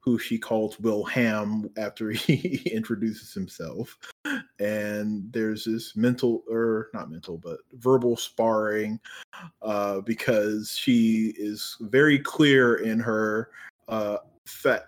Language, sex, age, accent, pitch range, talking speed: English, male, 20-39, American, 115-130 Hz, 115 wpm